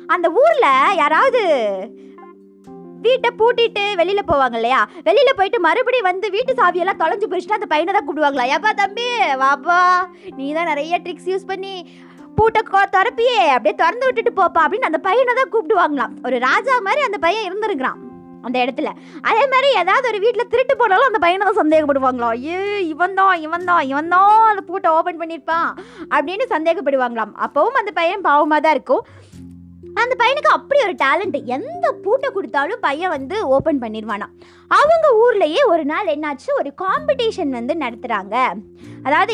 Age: 20-39